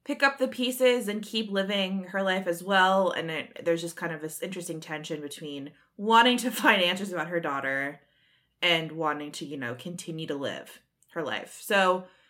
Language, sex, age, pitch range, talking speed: English, female, 20-39, 155-195 Hz, 190 wpm